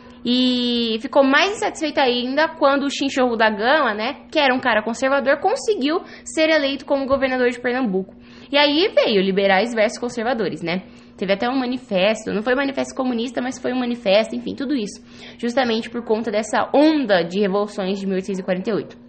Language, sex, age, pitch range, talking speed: English, female, 10-29, 195-275 Hz, 175 wpm